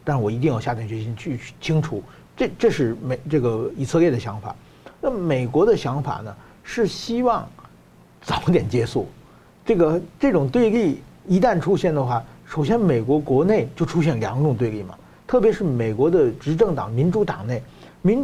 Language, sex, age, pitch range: Chinese, male, 50-69, 125-190 Hz